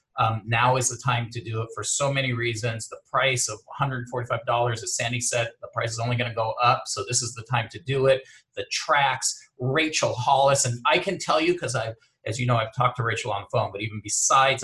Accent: American